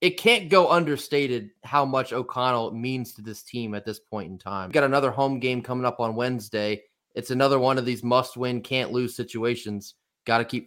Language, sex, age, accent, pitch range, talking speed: English, male, 30-49, American, 125-190 Hz, 200 wpm